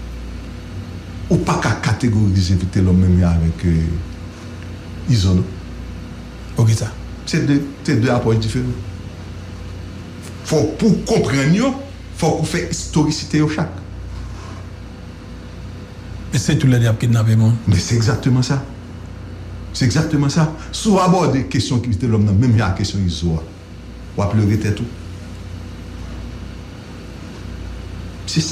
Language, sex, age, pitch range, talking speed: English, male, 60-79, 90-130 Hz, 115 wpm